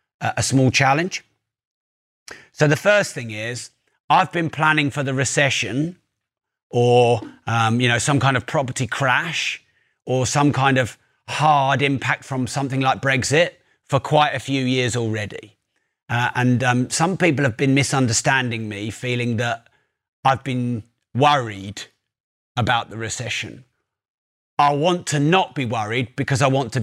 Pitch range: 120-140 Hz